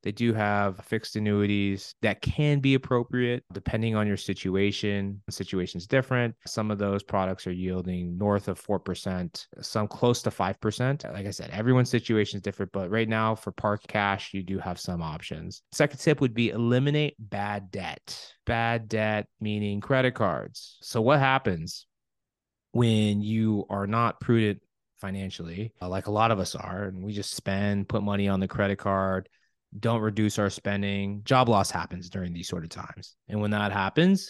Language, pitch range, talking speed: English, 95-115 Hz, 175 wpm